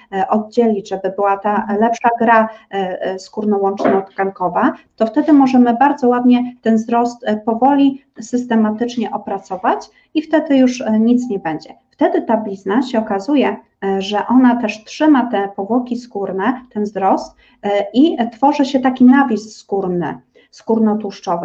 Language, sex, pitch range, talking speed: Polish, female, 200-255 Hz, 125 wpm